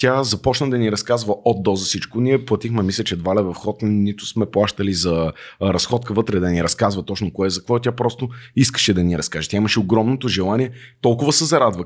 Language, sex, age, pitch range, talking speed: Bulgarian, male, 30-49, 105-140 Hz, 215 wpm